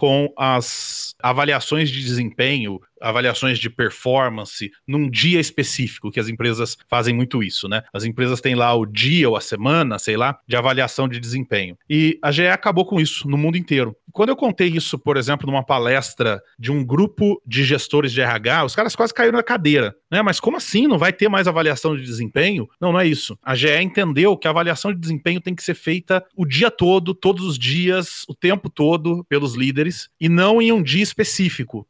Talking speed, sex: 200 wpm, male